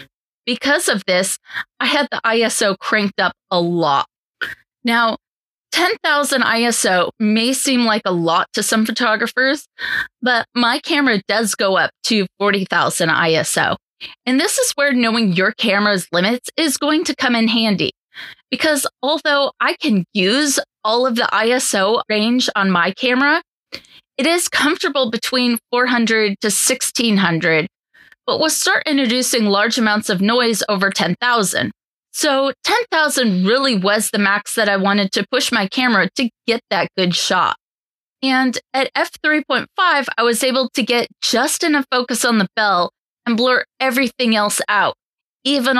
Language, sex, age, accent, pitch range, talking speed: English, female, 20-39, American, 210-265 Hz, 150 wpm